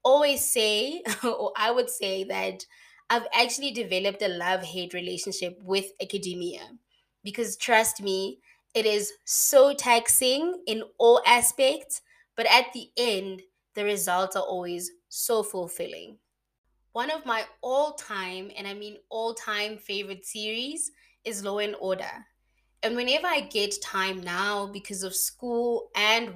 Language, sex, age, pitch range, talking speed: English, female, 20-39, 190-235 Hz, 135 wpm